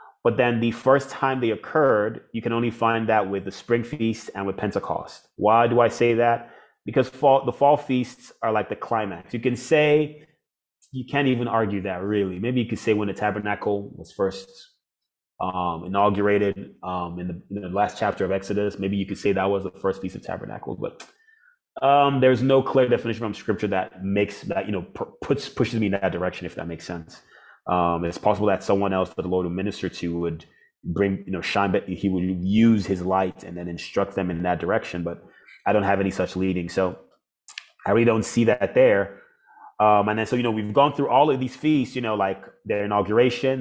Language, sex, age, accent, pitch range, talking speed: English, male, 30-49, American, 95-120 Hz, 220 wpm